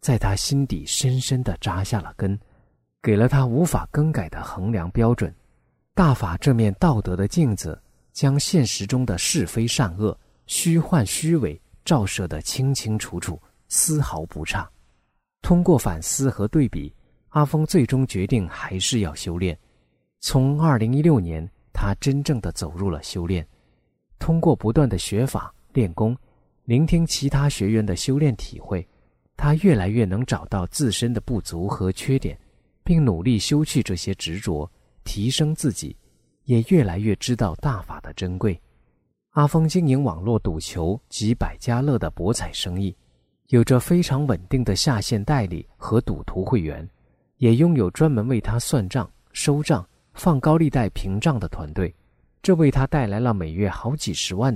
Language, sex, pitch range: Chinese, male, 90-140 Hz